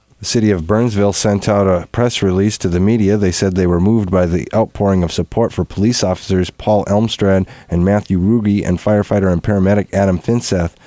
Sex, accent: male, American